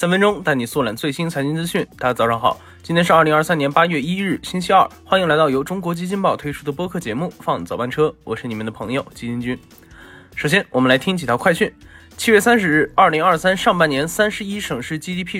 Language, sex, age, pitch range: Chinese, male, 20-39, 135-185 Hz